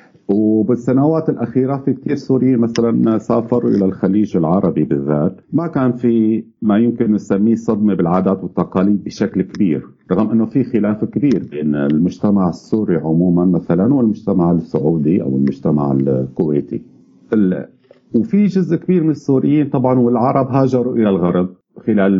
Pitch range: 90-125 Hz